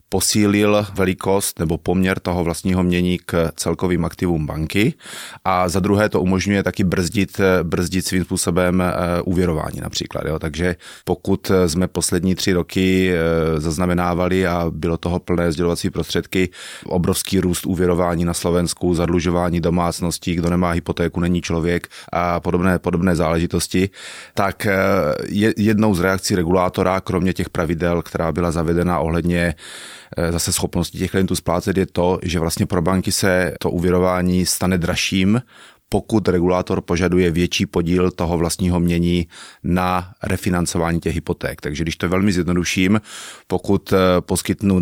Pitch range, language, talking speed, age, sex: 85-95 Hz, Slovak, 135 wpm, 30-49, male